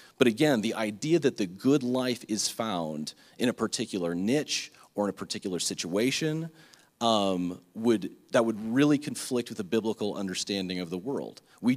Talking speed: 170 wpm